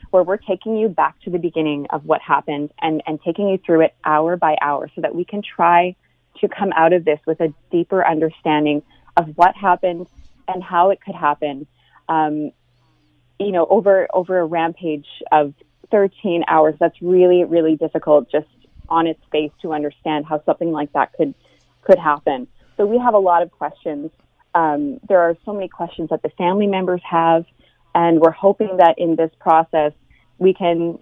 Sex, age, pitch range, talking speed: female, 30-49, 155-185 Hz, 185 wpm